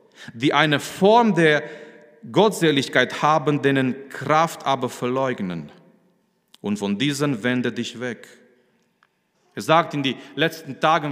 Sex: male